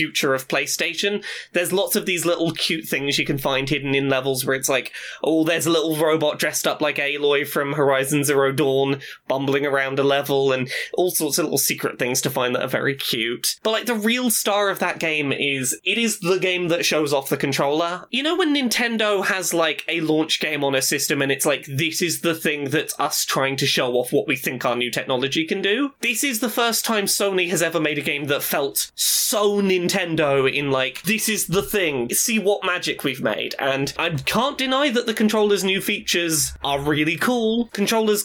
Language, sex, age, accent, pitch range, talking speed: English, male, 20-39, British, 140-210 Hz, 220 wpm